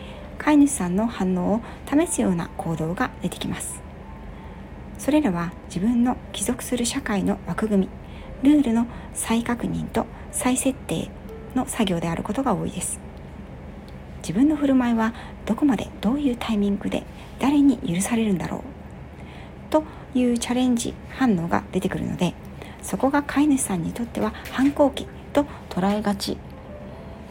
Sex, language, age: female, Japanese, 60-79